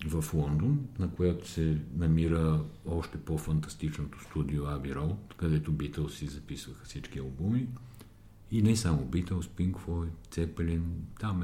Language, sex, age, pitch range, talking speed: Bulgarian, male, 50-69, 75-95 Hz, 125 wpm